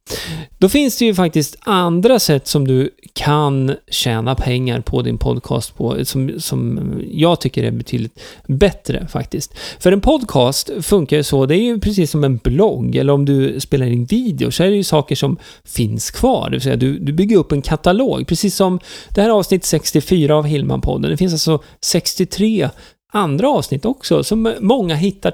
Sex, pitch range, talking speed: male, 135-185 Hz, 185 wpm